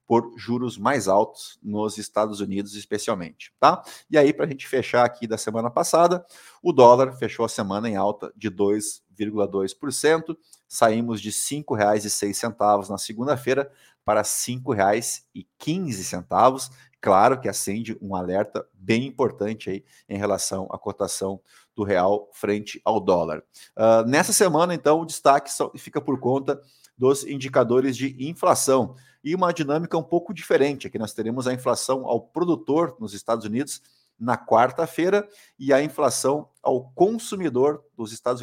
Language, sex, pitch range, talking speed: Portuguese, male, 110-145 Hz, 140 wpm